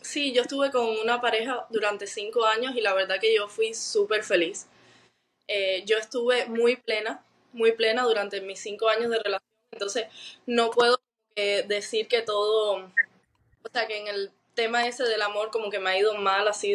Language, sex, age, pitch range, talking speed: Spanish, female, 20-39, 215-255 Hz, 190 wpm